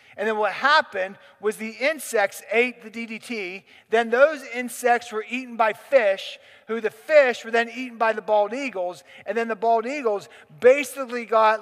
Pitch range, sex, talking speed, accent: 210-255 Hz, male, 175 wpm, American